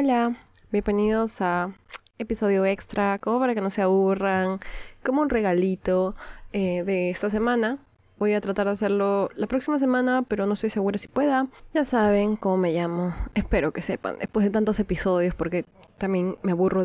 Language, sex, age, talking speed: Spanish, female, 20-39, 170 wpm